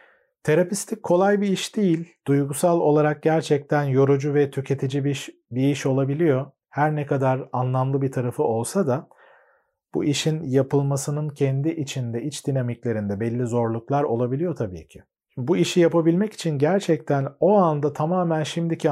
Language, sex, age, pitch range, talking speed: Turkish, male, 40-59, 130-155 Hz, 145 wpm